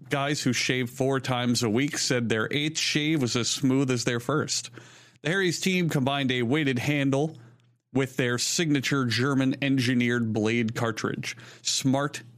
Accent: American